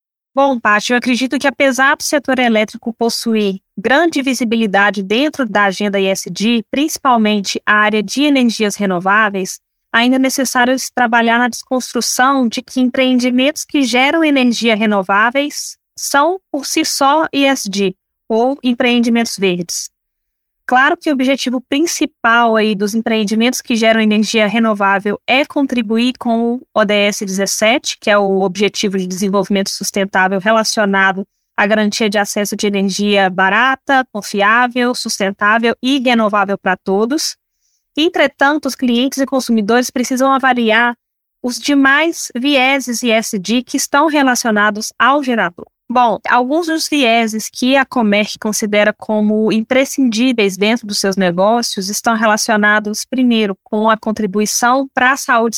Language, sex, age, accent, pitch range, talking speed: Portuguese, female, 20-39, Brazilian, 210-265 Hz, 130 wpm